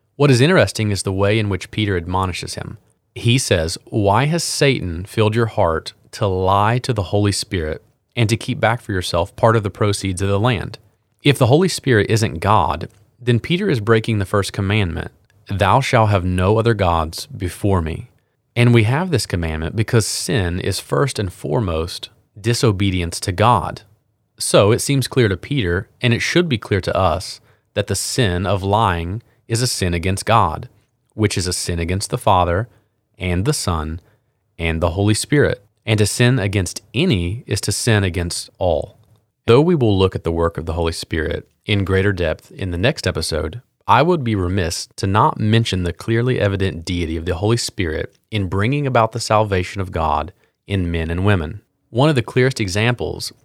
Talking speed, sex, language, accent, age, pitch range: 190 wpm, male, English, American, 30-49, 95-120 Hz